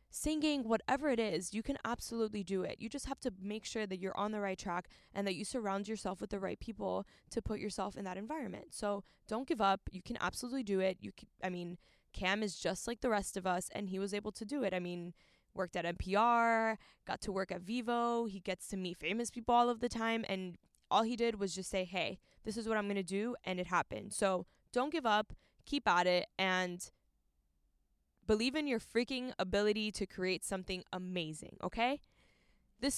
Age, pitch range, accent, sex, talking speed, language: 10-29, 185-235 Hz, American, female, 215 wpm, English